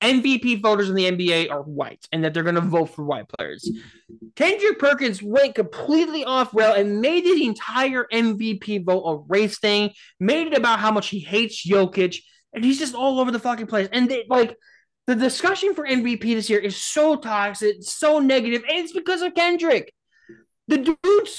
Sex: male